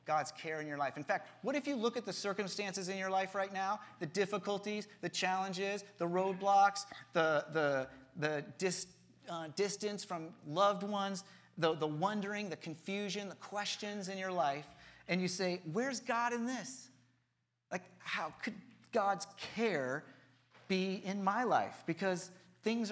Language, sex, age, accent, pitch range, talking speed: English, male, 30-49, American, 160-200 Hz, 155 wpm